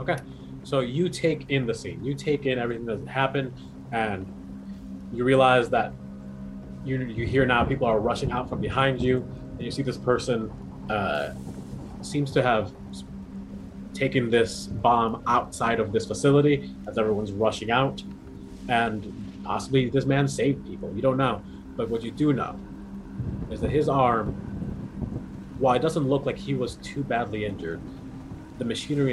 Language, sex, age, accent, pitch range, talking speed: English, male, 30-49, American, 95-130 Hz, 160 wpm